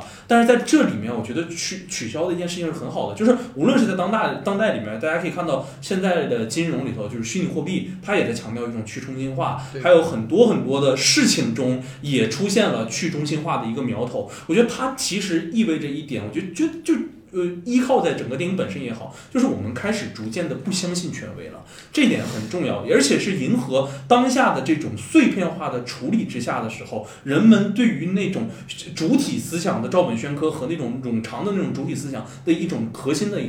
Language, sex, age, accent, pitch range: Chinese, male, 20-39, native, 125-200 Hz